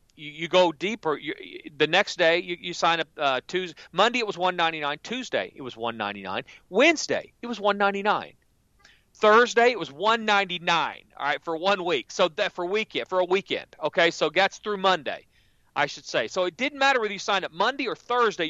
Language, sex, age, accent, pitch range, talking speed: English, male, 40-59, American, 150-210 Hz, 215 wpm